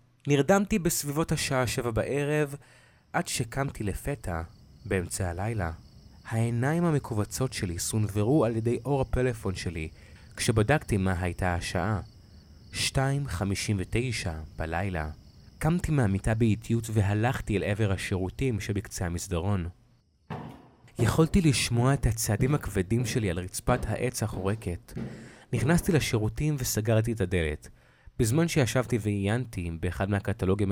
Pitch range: 95-125 Hz